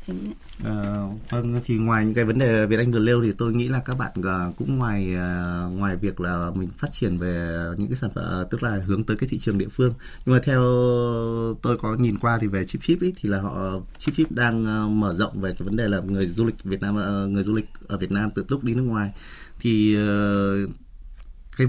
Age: 20-39